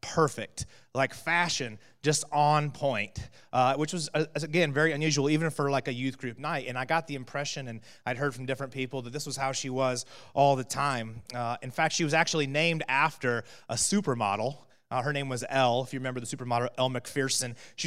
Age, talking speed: 30-49, 210 wpm